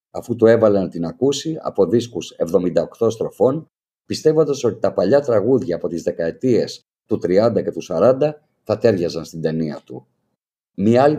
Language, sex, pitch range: Greek, male, 105-150 Hz